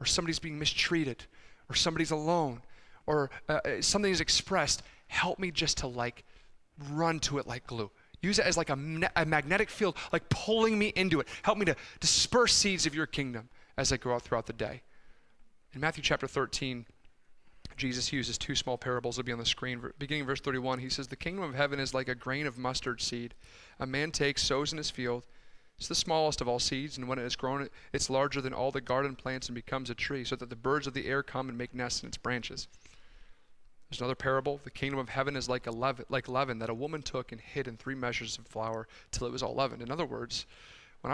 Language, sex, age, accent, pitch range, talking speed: English, male, 30-49, American, 120-150 Hz, 230 wpm